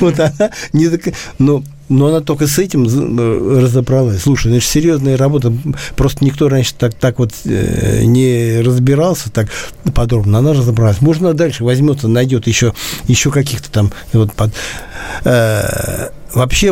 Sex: male